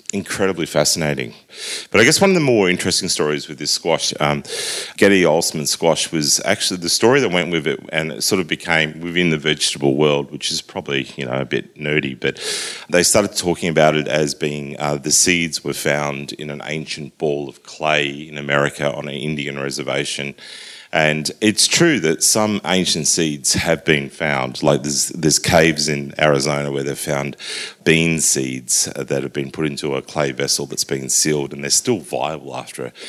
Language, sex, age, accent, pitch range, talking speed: English, male, 30-49, Australian, 70-80 Hz, 190 wpm